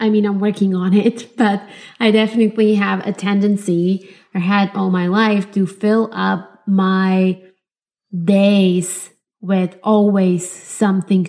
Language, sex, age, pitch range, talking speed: English, female, 20-39, 185-210 Hz, 135 wpm